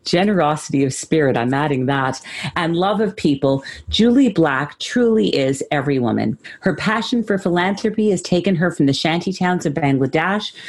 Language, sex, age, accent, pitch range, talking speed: English, female, 40-59, American, 145-205 Hz, 165 wpm